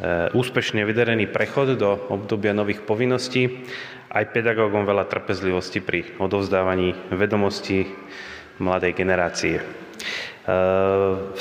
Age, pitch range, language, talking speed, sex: 30-49, 95-115 Hz, Slovak, 90 wpm, male